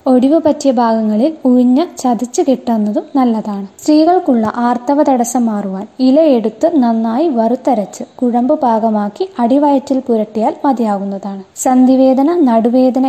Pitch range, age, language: 225-275 Hz, 20-39, Malayalam